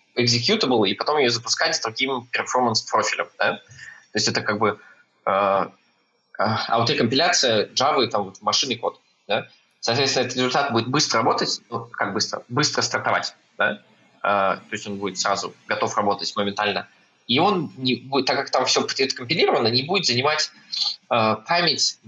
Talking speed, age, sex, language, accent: 170 wpm, 20-39, male, Russian, native